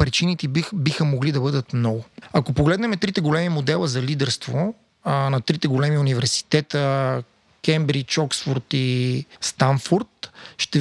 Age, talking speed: 30-49, 135 wpm